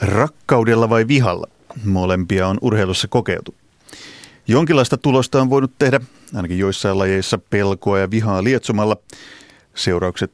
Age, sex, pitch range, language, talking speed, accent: 30-49, male, 95-120 Hz, Finnish, 115 wpm, native